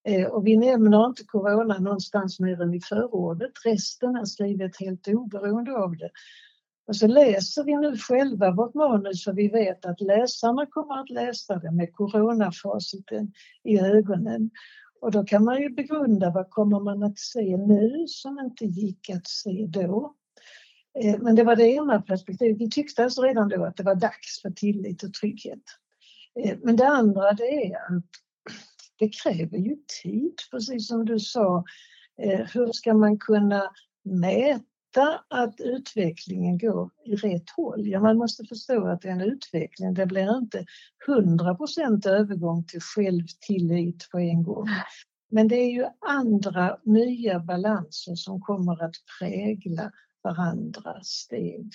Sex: female